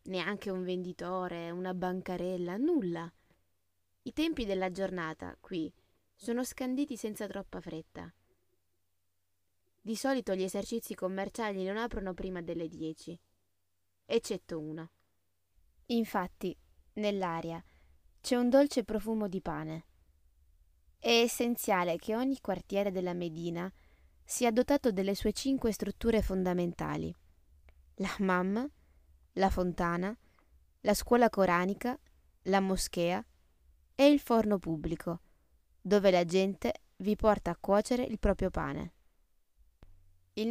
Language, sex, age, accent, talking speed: Italian, female, 20-39, native, 110 wpm